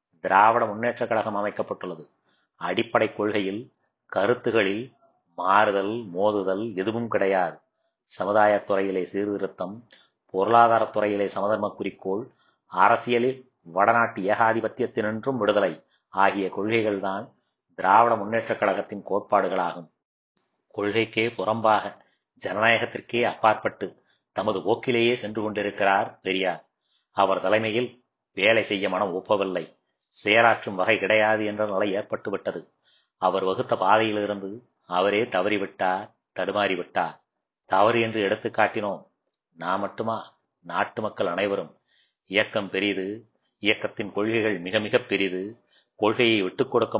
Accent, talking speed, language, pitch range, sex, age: native, 100 wpm, Tamil, 100-115 Hz, male, 30-49